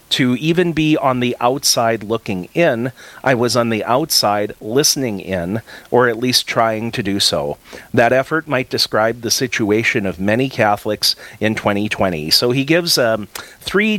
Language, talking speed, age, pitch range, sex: English, 165 wpm, 40-59, 110-135 Hz, male